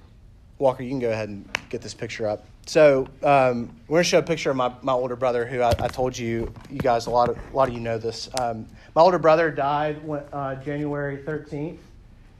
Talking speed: 230 wpm